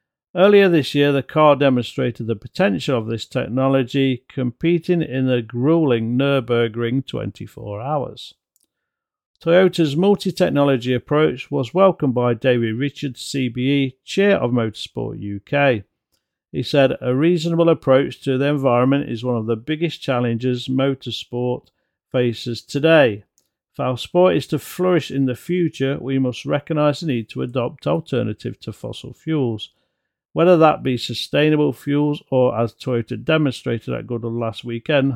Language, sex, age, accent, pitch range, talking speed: English, male, 50-69, British, 120-150 Hz, 140 wpm